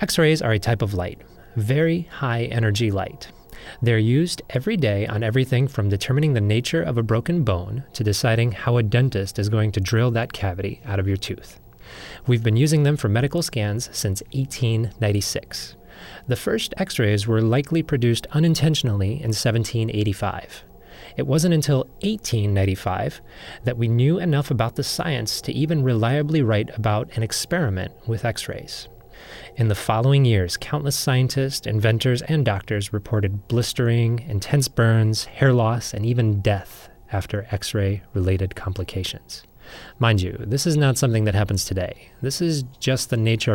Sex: male